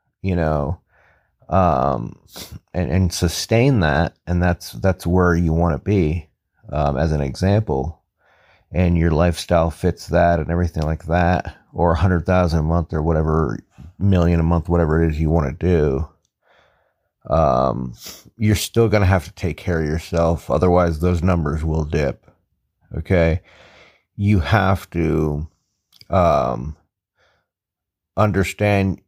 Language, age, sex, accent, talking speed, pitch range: English, 30-49, male, American, 140 wpm, 80-95 Hz